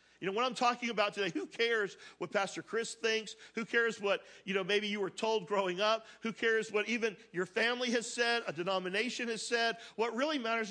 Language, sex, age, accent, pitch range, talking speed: English, male, 50-69, American, 195-240 Hz, 220 wpm